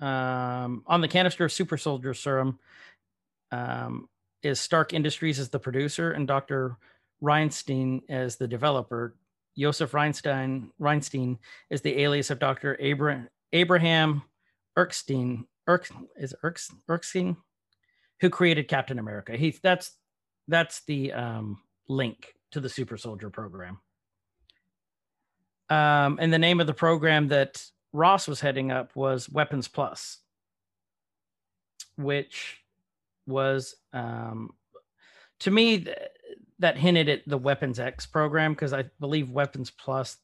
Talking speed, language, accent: 125 wpm, English, American